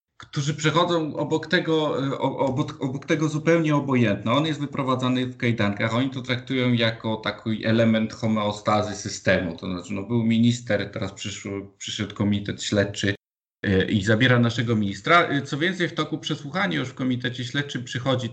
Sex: male